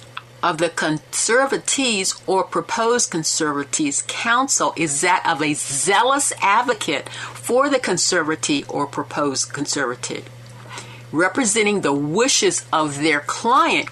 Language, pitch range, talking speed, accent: English, 145-215 Hz, 110 wpm, American